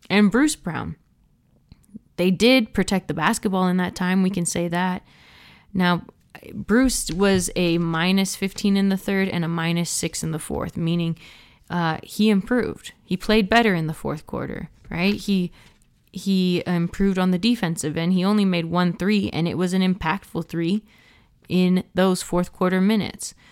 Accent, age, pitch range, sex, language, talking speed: American, 20-39, 165-195 Hz, female, English, 170 wpm